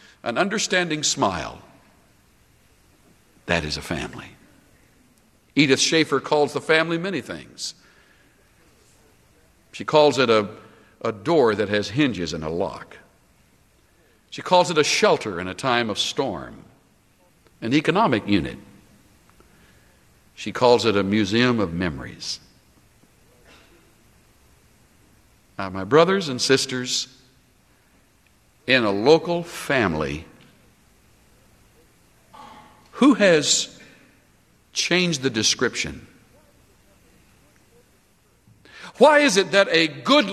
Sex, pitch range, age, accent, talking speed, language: male, 105-165 Hz, 60-79, American, 95 wpm, English